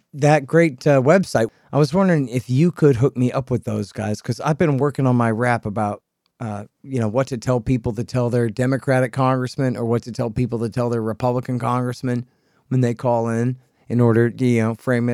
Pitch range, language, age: 110-130 Hz, English, 40-59